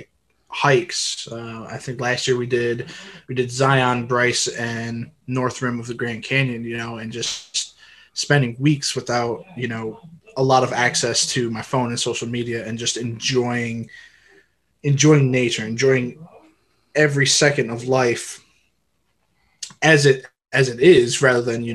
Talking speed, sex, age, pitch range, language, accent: 155 wpm, male, 20-39, 115-135 Hz, English, American